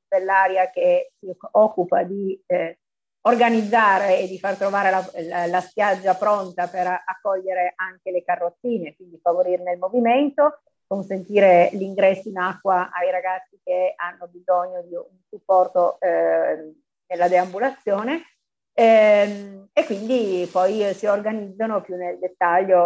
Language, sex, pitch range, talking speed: Italian, female, 180-215 Hz, 130 wpm